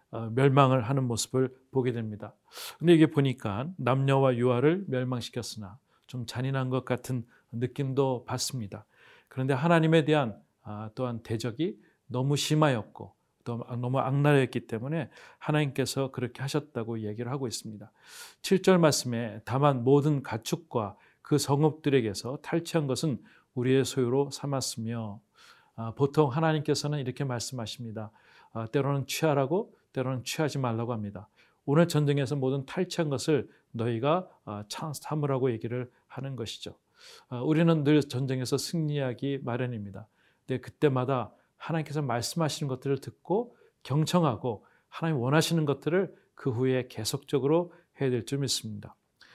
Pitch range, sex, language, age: 120-150 Hz, male, Korean, 40-59